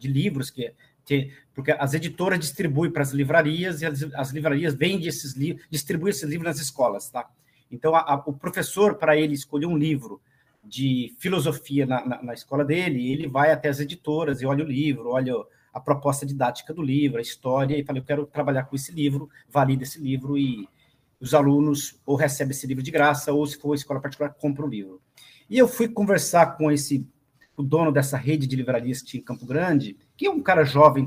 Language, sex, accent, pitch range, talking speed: Portuguese, male, Brazilian, 135-170 Hz, 205 wpm